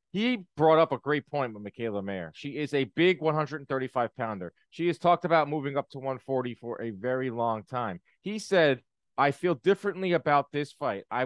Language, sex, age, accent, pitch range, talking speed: English, male, 30-49, American, 125-175 Hz, 195 wpm